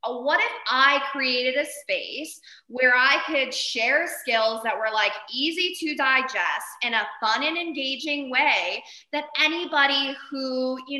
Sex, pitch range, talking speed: female, 225-290 Hz, 145 wpm